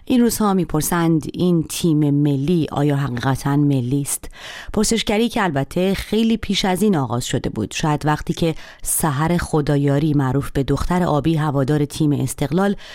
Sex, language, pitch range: female, Persian, 140-185 Hz